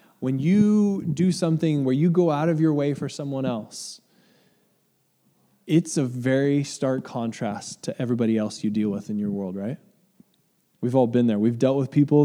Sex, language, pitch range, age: male, English, 120-150 Hz, 20-39